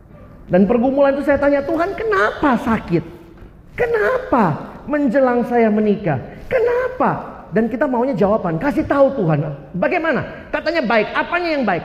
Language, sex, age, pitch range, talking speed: Indonesian, male, 40-59, 200-295 Hz, 130 wpm